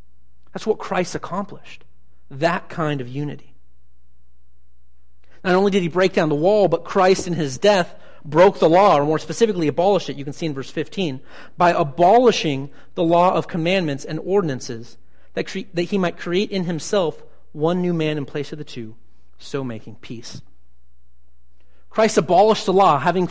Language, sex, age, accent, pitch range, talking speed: English, male, 40-59, American, 145-215 Hz, 170 wpm